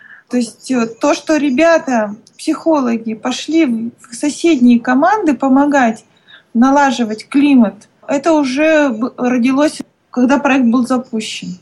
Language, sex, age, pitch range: Russian, female, 20-39, 230-285 Hz